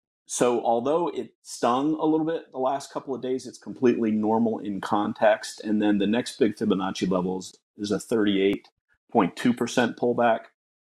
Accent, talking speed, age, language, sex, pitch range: American, 155 wpm, 40-59, English, male, 95-110 Hz